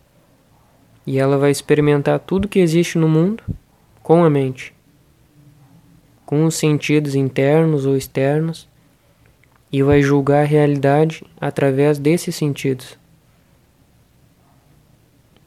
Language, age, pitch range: Portuguese, 20-39, 135-155 Hz